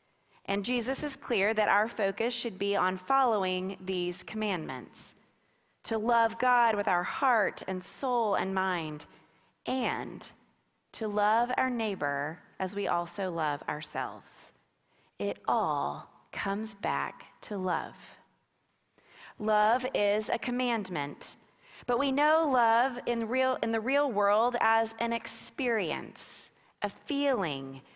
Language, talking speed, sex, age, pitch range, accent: English, 125 wpm, female, 30-49, 185-235 Hz, American